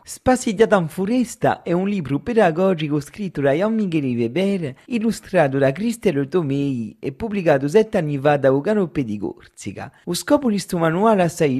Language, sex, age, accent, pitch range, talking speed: French, male, 40-59, Italian, 145-200 Hz, 165 wpm